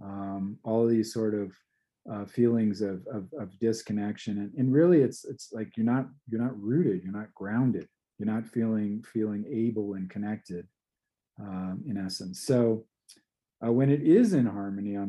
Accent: American